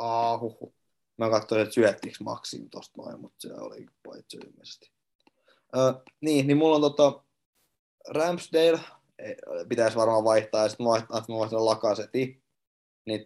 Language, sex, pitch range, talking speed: Finnish, male, 105-120 Hz, 140 wpm